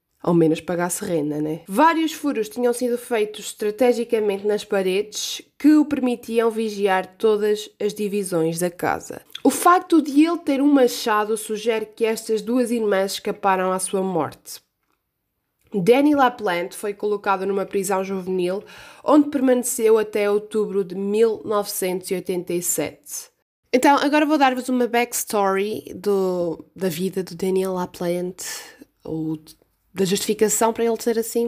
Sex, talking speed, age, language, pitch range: female, 135 wpm, 20-39, Portuguese, 195-245 Hz